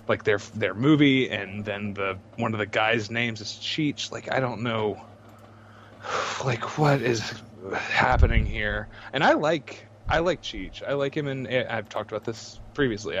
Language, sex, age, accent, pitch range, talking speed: English, male, 20-39, American, 105-130 Hz, 175 wpm